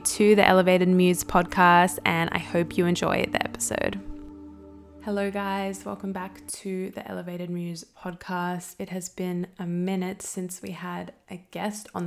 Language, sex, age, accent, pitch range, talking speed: English, female, 20-39, Australian, 170-195 Hz, 160 wpm